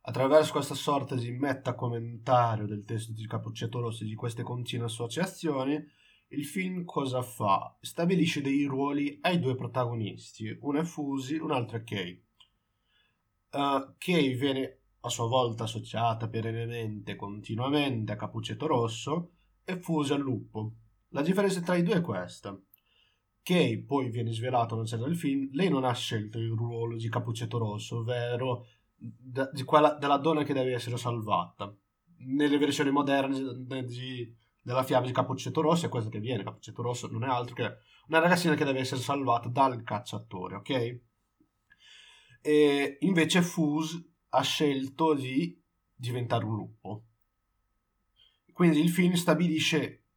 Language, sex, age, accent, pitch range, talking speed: Italian, male, 20-39, native, 115-150 Hz, 150 wpm